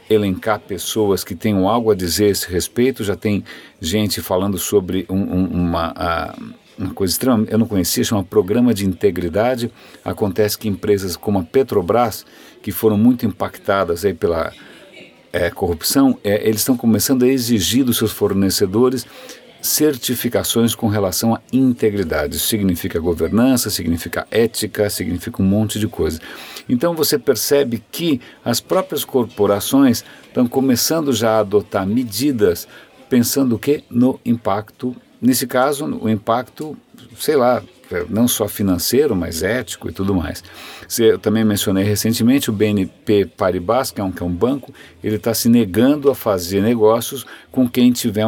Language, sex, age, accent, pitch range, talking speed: Portuguese, male, 50-69, Brazilian, 95-125 Hz, 145 wpm